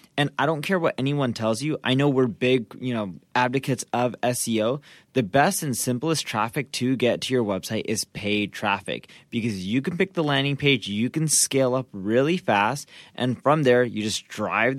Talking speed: 200 wpm